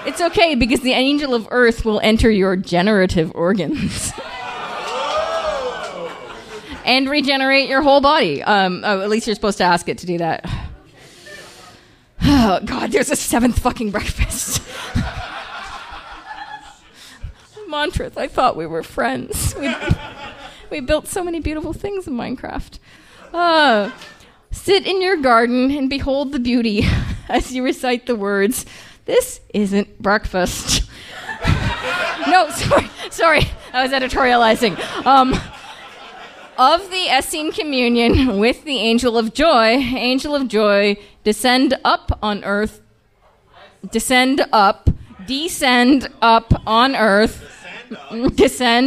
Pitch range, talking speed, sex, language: 210-280 Hz, 120 wpm, female, English